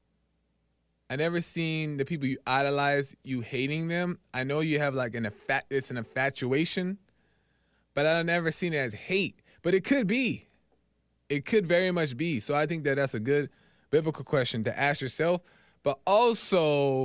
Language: English